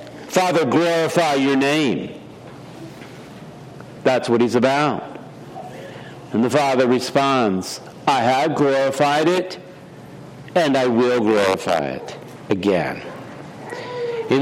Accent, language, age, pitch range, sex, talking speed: American, English, 50-69, 130-160 Hz, male, 95 wpm